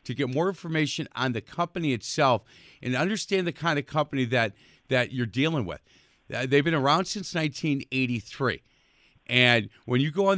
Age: 40-59